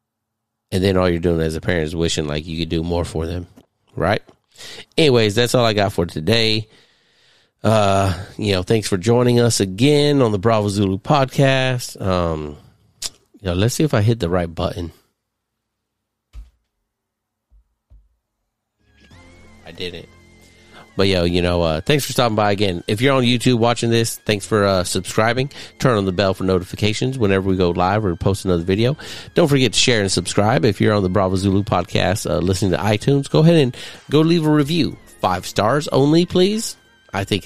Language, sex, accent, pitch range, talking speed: English, male, American, 90-115 Hz, 185 wpm